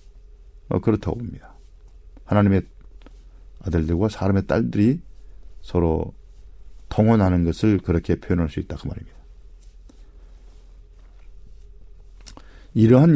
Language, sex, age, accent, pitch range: Korean, male, 40-59, native, 80-110 Hz